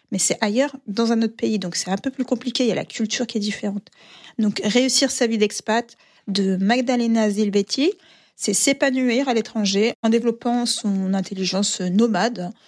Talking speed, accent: 190 wpm, French